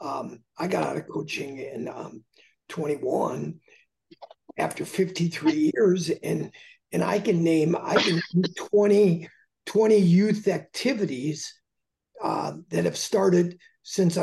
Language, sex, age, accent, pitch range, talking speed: English, male, 50-69, American, 175-215 Hz, 120 wpm